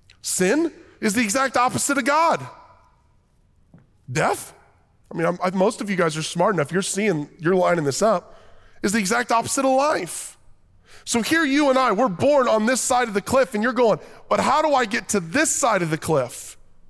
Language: English